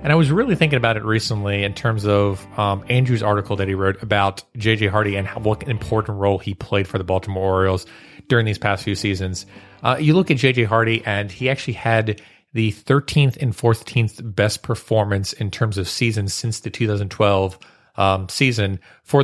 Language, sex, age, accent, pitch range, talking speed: English, male, 30-49, American, 100-120 Hz, 190 wpm